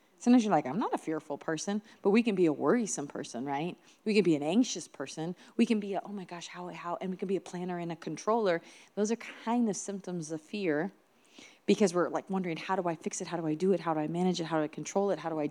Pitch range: 170-210 Hz